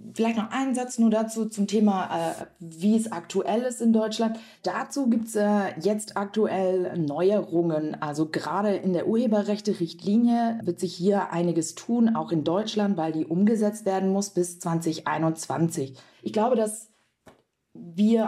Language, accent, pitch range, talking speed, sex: German, German, 175-220 Hz, 145 wpm, female